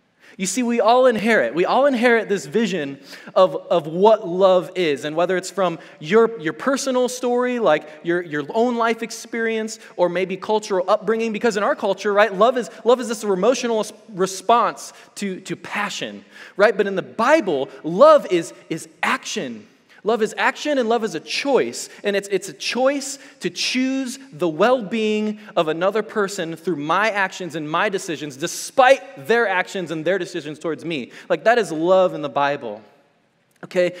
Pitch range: 175-230 Hz